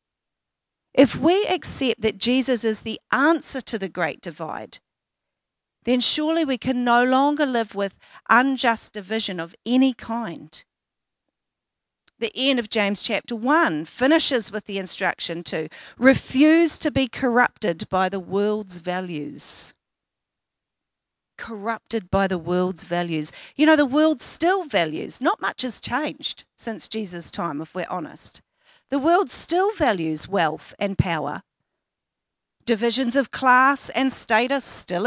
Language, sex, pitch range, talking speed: English, female, 190-270 Hz, 135 wpm